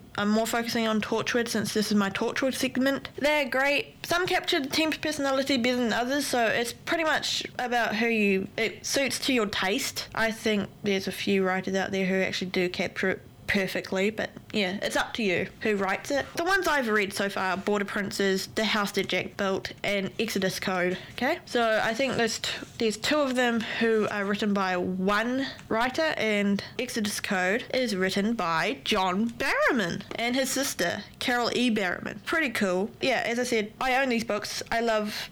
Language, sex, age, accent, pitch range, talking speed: English, female, 20-39, Australian, 200-260 Hz, 190 wpm